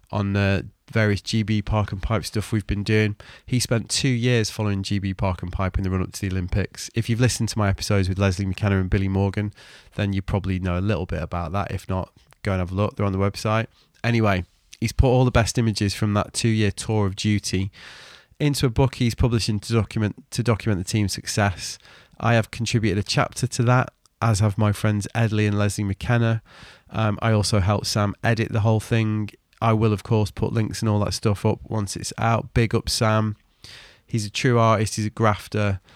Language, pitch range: English, 100-115 Hz